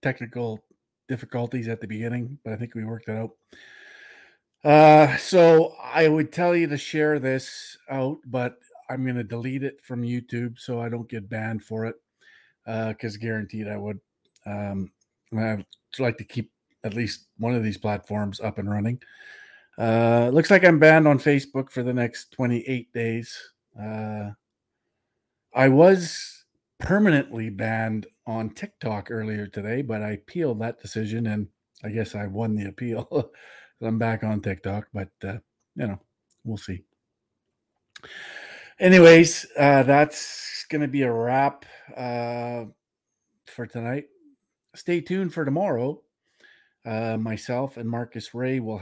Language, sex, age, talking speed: English, male, 40-59, 145 wpm